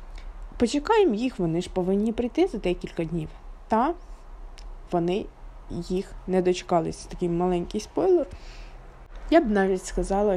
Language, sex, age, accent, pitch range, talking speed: Ukrainian, female, 20-39, native, 180-210 Hz, 120 wpm